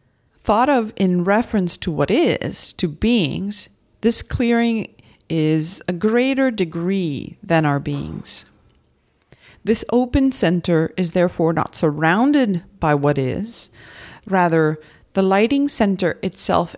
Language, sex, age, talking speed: English, female, 40-59, 120 wpm